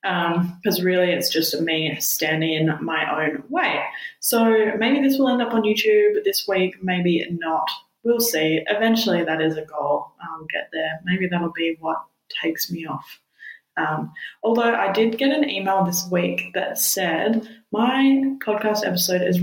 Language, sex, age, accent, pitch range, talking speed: English, female, 20-39, Australian, 175-250 Hz, 175 wpm